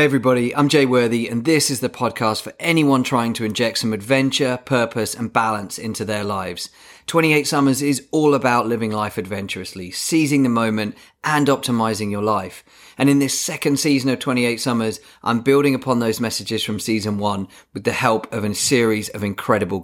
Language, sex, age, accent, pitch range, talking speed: English, male, 30-49, British, 110-140 Hz, 190 wpm